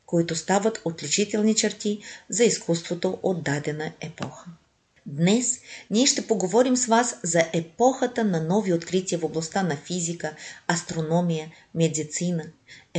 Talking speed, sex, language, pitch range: 125 wpm, female, Bulgarian, 165-210 Hz